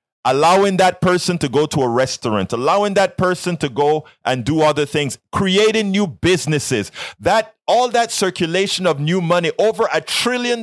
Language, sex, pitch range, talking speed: English, male, 135-185 Hz, 170 wpm